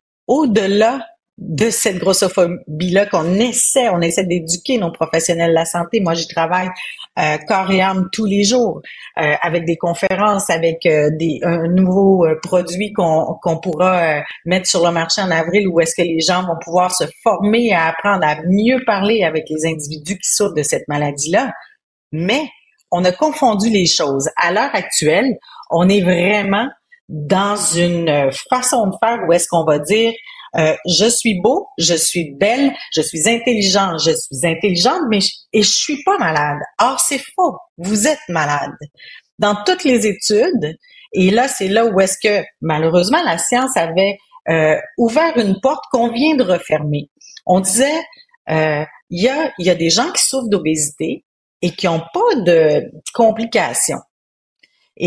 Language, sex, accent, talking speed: French, female, Canadian, 175 wpm